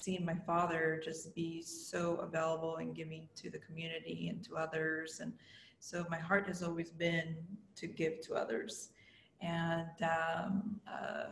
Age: 20-39